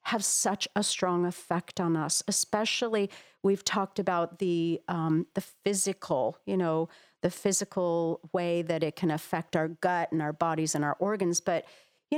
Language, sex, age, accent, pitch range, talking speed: English, female, 40-59, American, 190-265 Hz, 170 wpm